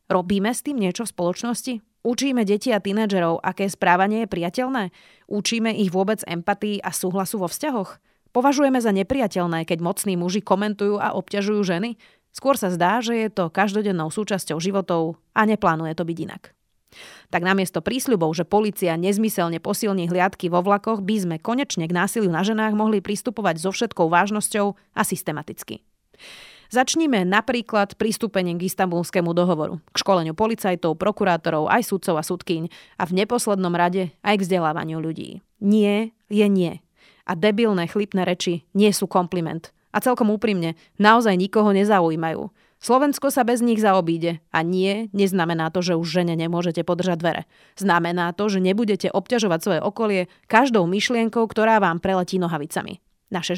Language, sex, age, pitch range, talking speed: Slovak, female, 30-49, 175-215 Hz, 155 wpm